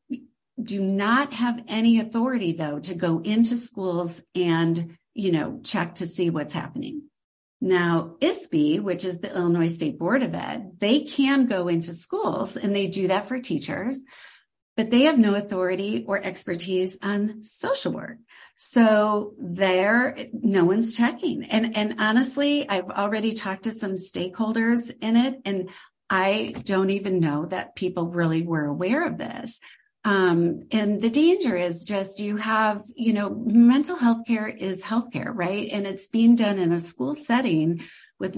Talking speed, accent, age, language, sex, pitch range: 160 wpm, American, 50-69, English, female, 180-235 Hz